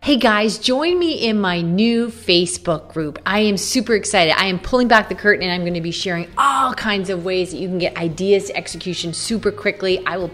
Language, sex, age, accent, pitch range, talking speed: English, female, 30-49, American, 180-250 Hz, 230 wpm